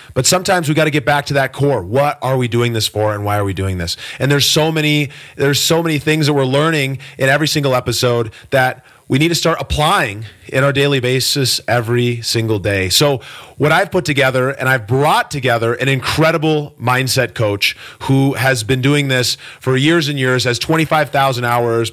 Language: English